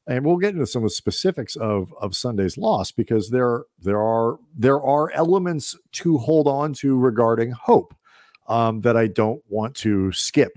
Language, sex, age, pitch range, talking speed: English, male, 50-69, 100-135 Hz, 180 wpm